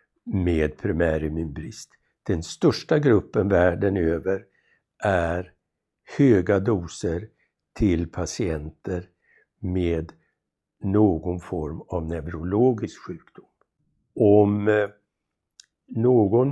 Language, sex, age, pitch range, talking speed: Swedish, male, 60-79, 85-110 Hz, 75 wpm